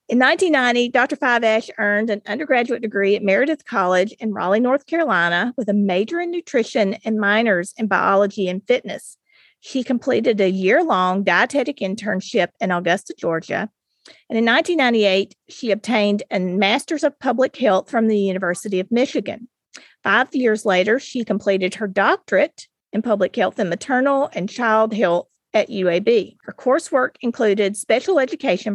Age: 40-59